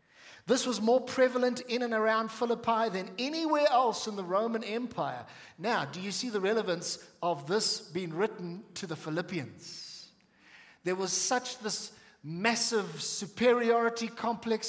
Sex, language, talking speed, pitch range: male, English, 145 wpm, 180-230 Hz